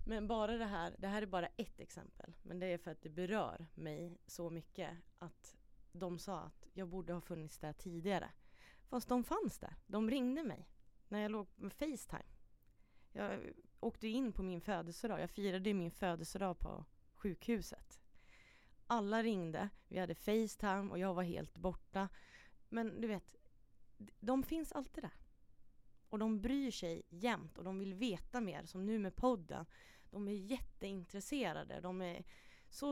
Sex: female